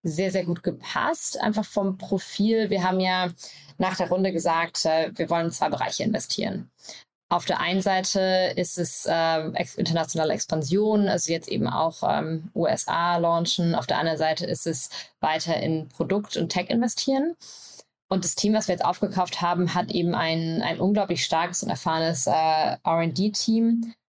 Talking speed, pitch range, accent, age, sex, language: 160 wpm, 165-195 Hz, German, 20-39, female, German